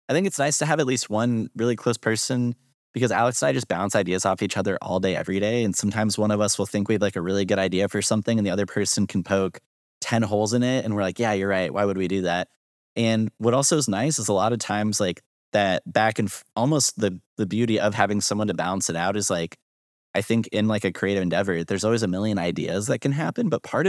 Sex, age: male, 20-39